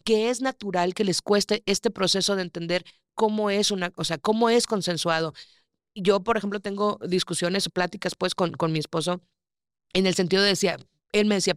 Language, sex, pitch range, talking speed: Spanish, female, 185-240 Hz, 195 wpm